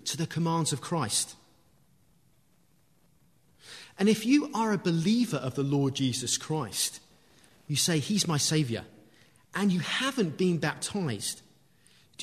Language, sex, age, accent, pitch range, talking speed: English, male, 30-49, British, 120-165 Hz, 130 wpm